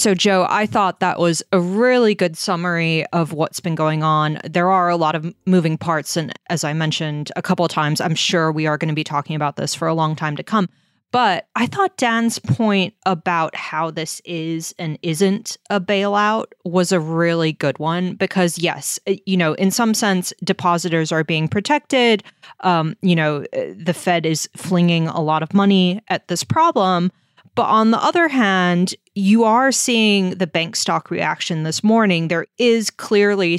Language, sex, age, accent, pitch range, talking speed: English, female, 20-39, American, 165-200 Hz, 190 wpm